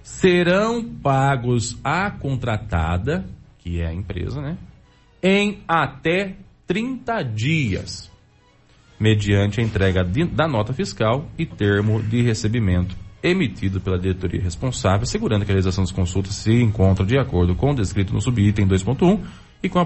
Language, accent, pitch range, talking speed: Portuguese, Brazilian, 100-160 Hz, 140 wpm